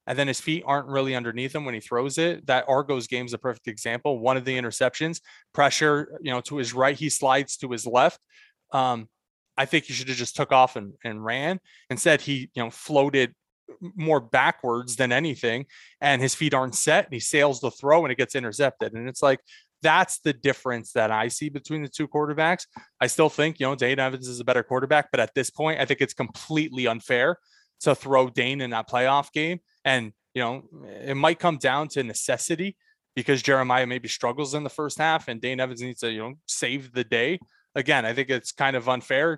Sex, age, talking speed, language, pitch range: male, 20-39, 220 wpm, English, 125-155 Hz